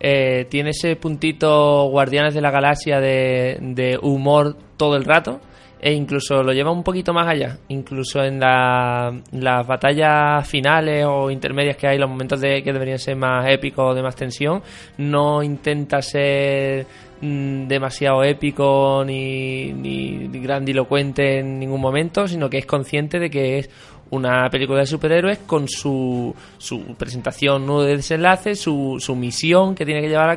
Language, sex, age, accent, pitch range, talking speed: Spanish, male, 20-39, Spanish, 130-145 Hz, 160 wpm